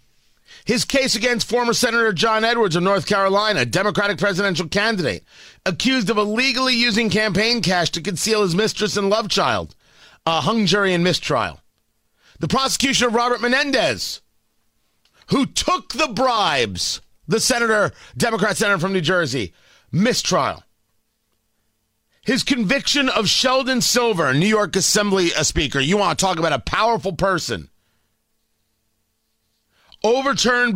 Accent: American